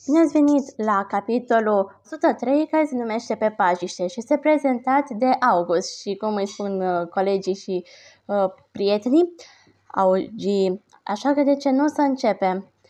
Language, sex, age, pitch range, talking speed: Romanian, female, 20-39, 190-240 Hz, 150 wpm